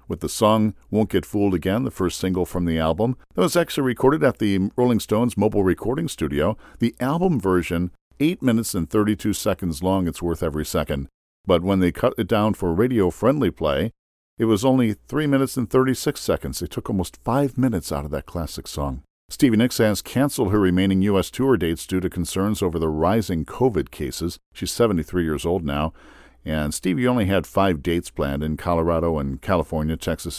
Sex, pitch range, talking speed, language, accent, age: male, 80-110 Hz, 195 wpm, English, American, 50-69